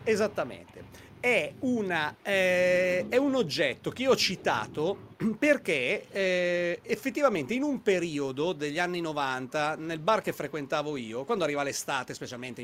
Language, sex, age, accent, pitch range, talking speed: Italian, male, 40-59, native, 155-220 Hz, 140 wpm